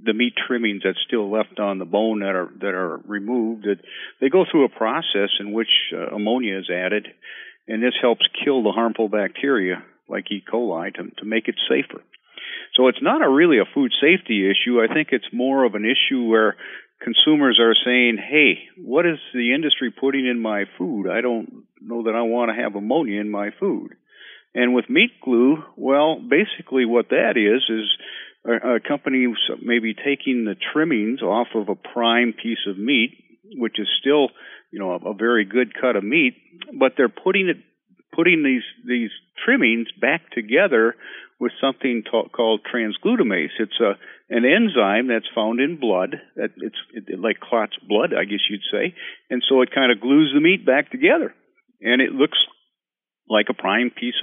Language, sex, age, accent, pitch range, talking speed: English, male, 50-69, American, 110-135 Hz, 185 wpm